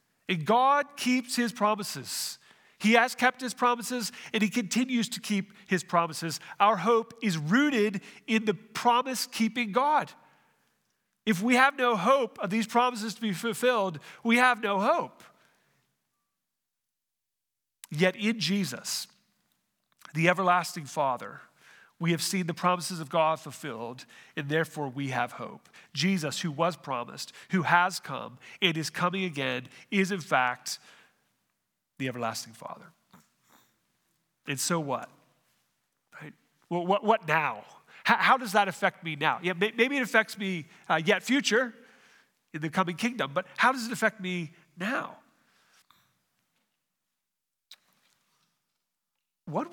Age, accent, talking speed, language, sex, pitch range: 40-59, American, 135 wpm, English, male, 160-230 Hz